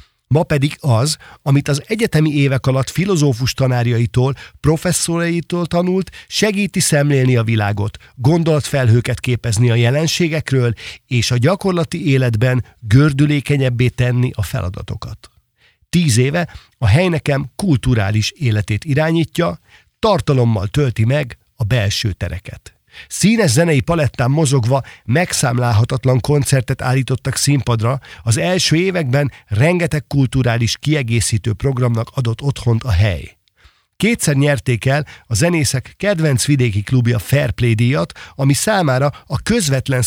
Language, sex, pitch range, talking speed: Hungarian, male, 115-150 Hz, 110 wpm